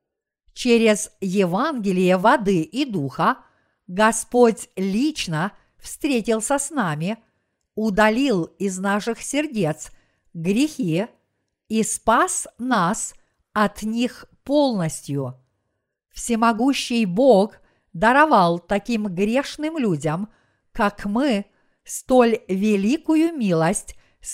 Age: 50-69